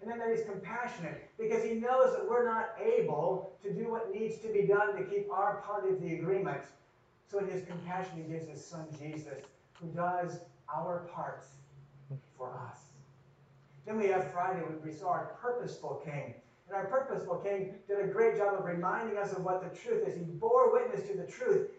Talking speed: 200 wpm